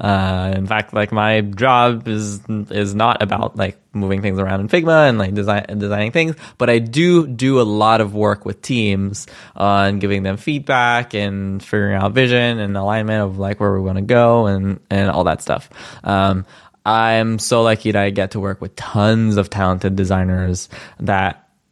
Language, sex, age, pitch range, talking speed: English, male, 20-39, 100-125 Hz, 190 wpm